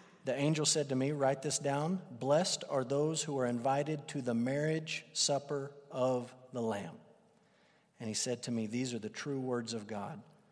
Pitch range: 125-160 Hz